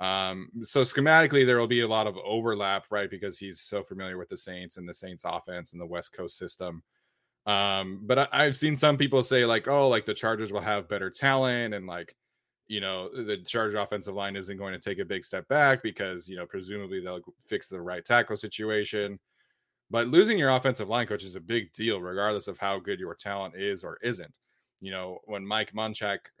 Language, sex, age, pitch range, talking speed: English, male, 20-39, 95-120 Hz, 215 wpm